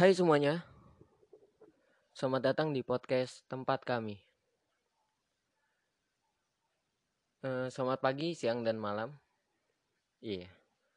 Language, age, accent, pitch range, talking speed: Indonesian, 20-39, native, 105-135 Hz, 75 wpm